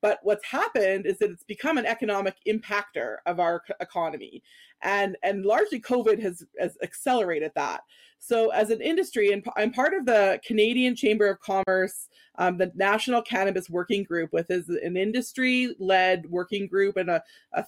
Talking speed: 170 wpm